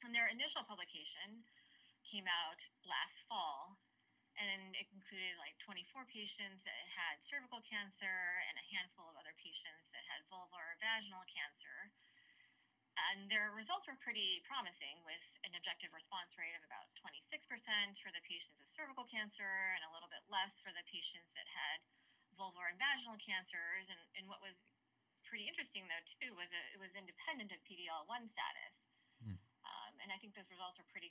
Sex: female